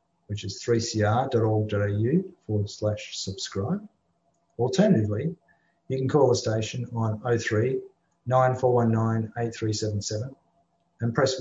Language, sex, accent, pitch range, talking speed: English, male, Australian, 105-130 Hz, 95 wpm